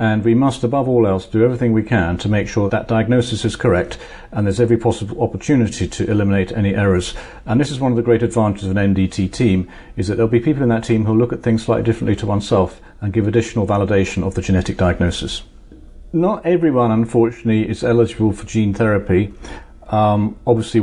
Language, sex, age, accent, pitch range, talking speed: English, male, 40-59, British, 95-115 Hz, 210 wpm